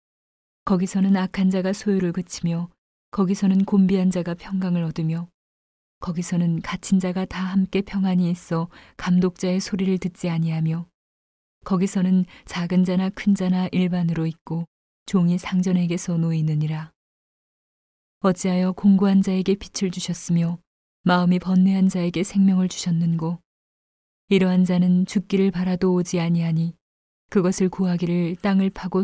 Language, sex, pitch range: Korean, female, 175-190 Hz